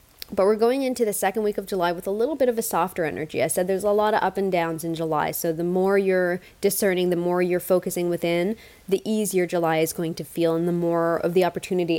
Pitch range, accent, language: 175-205 Hz, American, English